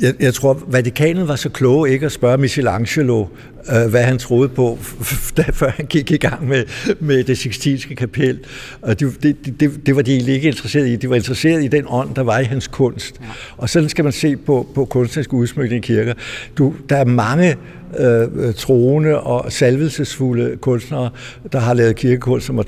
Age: 60-79